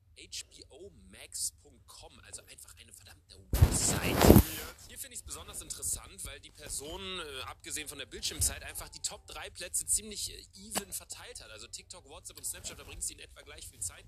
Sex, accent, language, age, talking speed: male, German, German, 30-49, 175 wpm